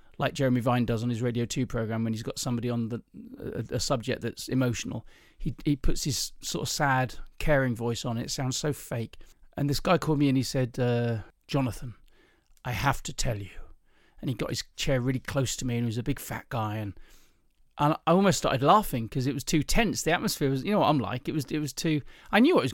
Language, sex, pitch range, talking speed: English, male, 120-155 Hz, 250 wpm